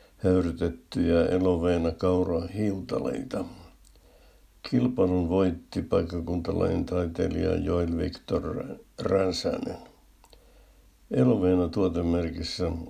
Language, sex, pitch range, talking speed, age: Finnish, male, 85-95 Hz, 50 wpm, 60-79